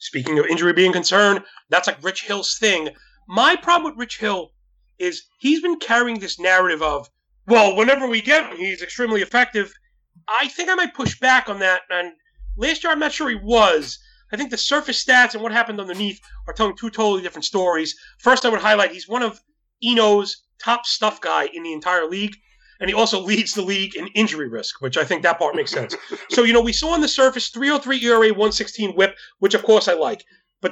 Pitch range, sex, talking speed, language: 205-260 Hz, male, 215 wpm, English